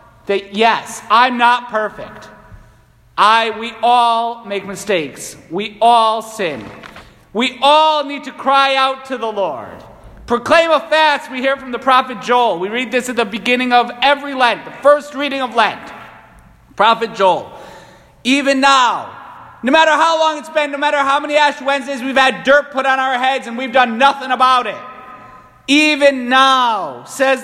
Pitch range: 220-285 Hz